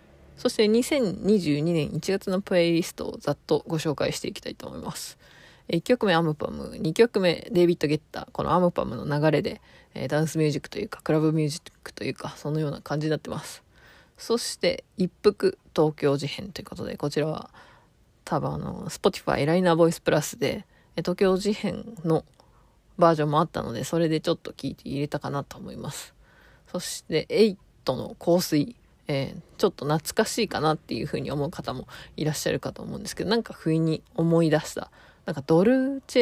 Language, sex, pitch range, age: Japanese, female, 155-195 Hz, 20-39